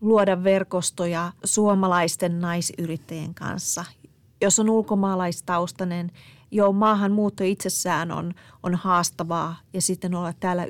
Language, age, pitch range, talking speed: Finnish, 30-49, 175-205 Hz, 100 wpm